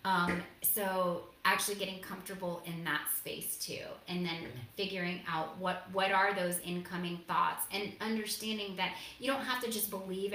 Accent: American